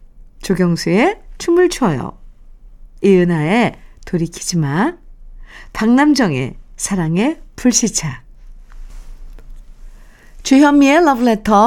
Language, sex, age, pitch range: Korean, female, 50-69, 180-255 Hz